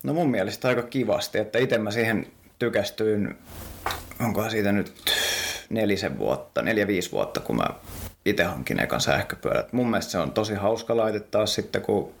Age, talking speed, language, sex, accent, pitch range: 30-49, 155 wpm, Finnish, male, native, 95-110 Hz